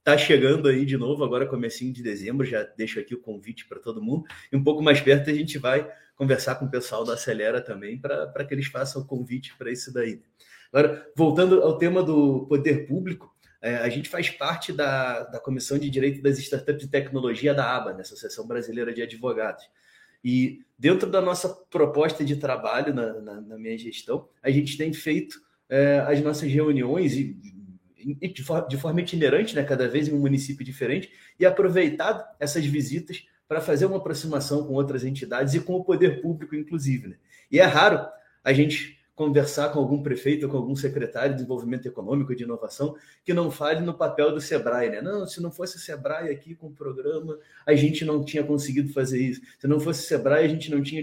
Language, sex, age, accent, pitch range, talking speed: Portuguese, male, 30-49, Brazilian, 135-155 Hz, 200 wpm